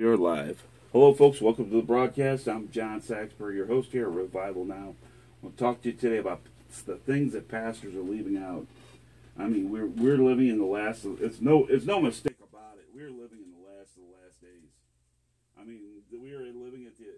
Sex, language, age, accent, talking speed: male, English, 40-59, American, 220 wpm